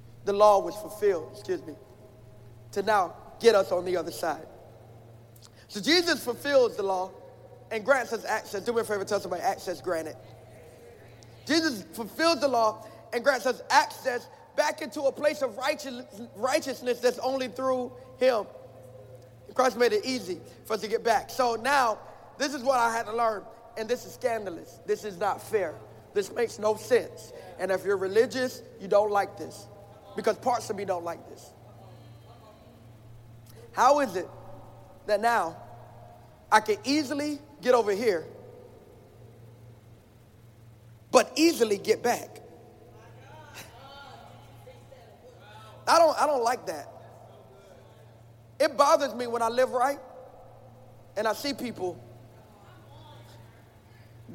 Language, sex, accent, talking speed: English, male, American, 140 wpm